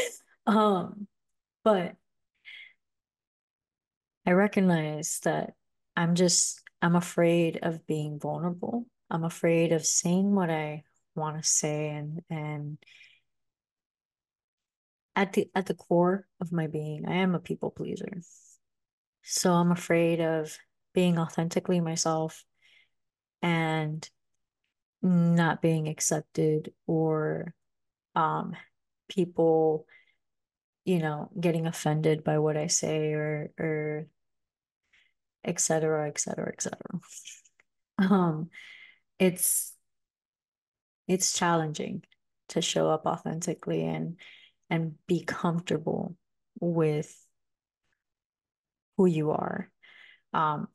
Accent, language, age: American, English, 30-49